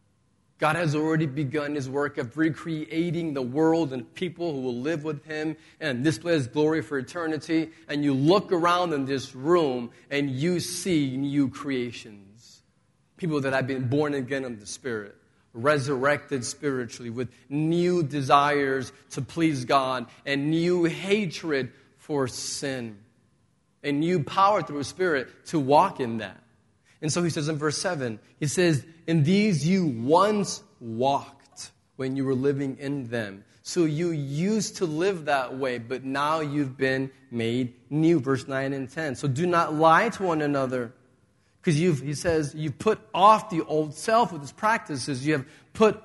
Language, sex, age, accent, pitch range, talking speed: English, male, 40-59, American, 130-165 Hz, 165 wpm